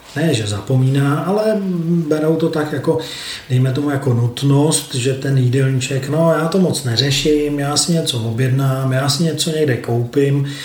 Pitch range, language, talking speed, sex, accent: 120-145 Hz, Czech, 165 wpm, male, native